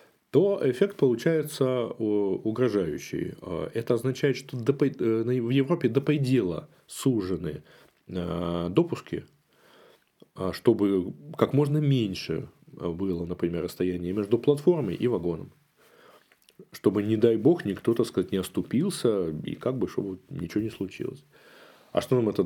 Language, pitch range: Russian, 90-125 Hz